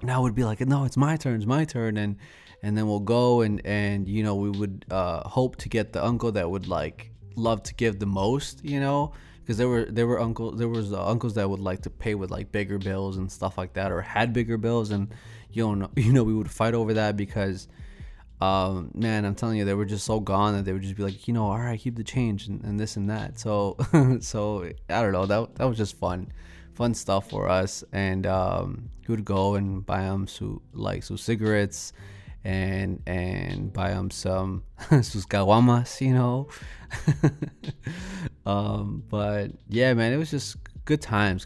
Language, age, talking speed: English, 20-39, 215 wpm